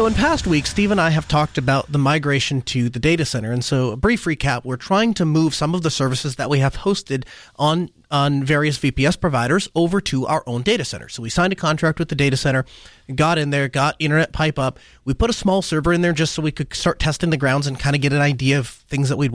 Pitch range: 135-175 Hz